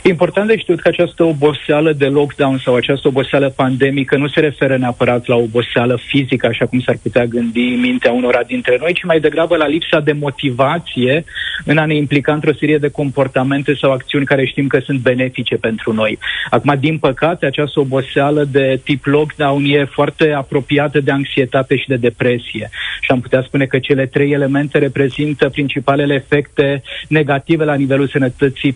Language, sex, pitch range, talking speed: Romanian, male, 135-155 Hz, 175 wpm